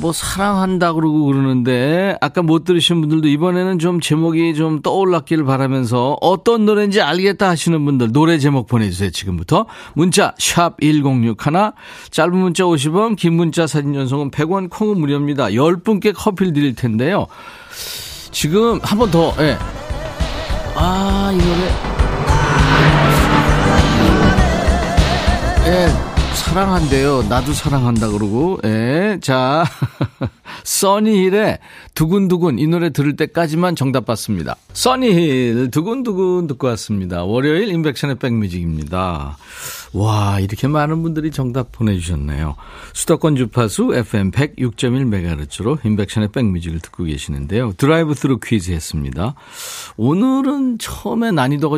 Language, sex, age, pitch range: Korean, male, 40-59, 105-170 Hz